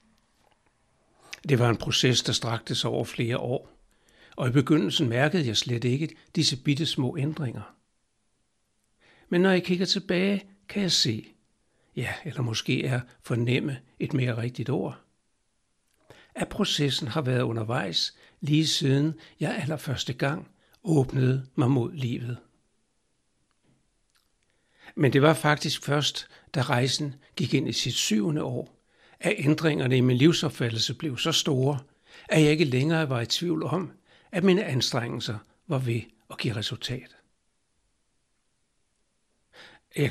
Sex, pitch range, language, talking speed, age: male, 125-160 Hz, Danish, 135 wpm, 60-79